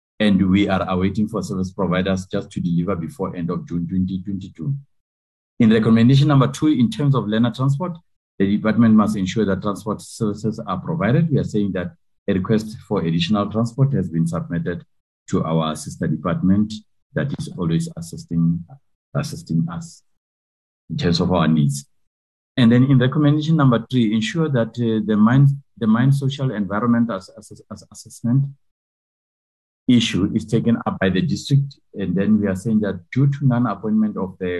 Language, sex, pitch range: English, male, 85-120 Hz